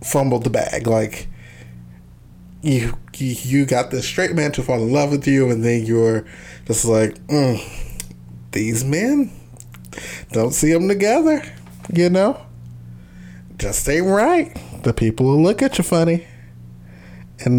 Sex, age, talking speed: male, 20-39, 140 wpm